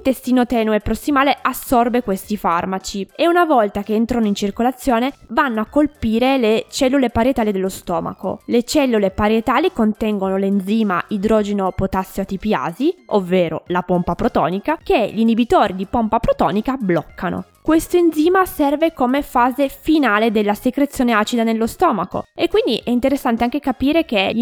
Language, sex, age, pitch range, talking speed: Italian, female, 20-39, 205-275 Hz, 145 wpm